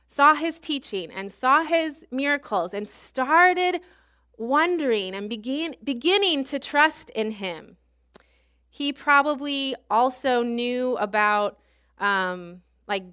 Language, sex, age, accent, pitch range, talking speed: English, female, 20-39, American, 210-285 Hz, 110 wpm